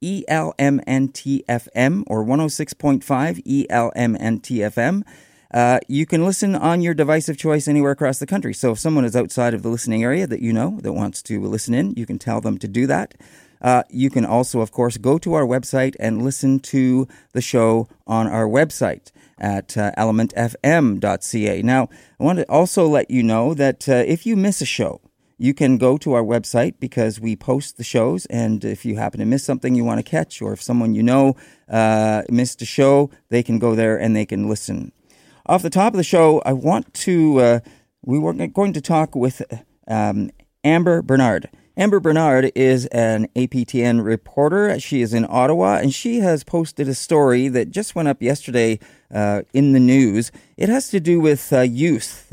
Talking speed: 190 wpm